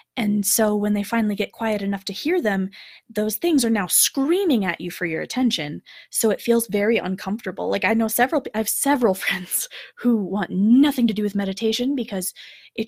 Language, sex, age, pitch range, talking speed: English, female, 20-39, 200-255 Hz, 200 wpm